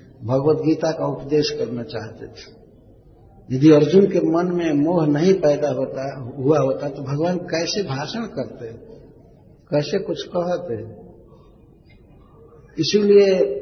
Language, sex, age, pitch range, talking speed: Hindi, male, 60-79, 130-165 Hz, 120 wpm